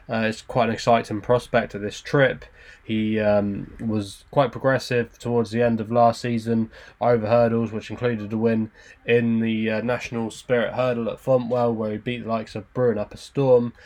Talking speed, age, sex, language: 190 wpm, 10-29, male, English